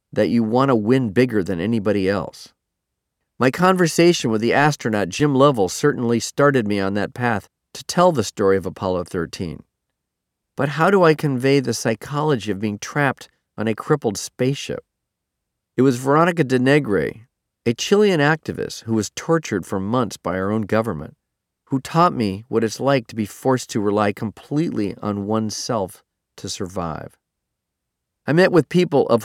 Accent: American